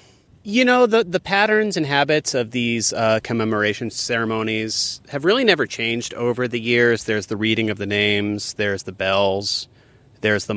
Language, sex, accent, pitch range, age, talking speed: English, male, American, 105-120 Hz, 30-49, 170 wpm